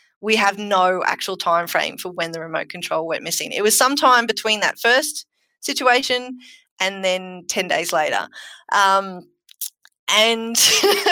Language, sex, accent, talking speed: English, female, Australian, 140 wpm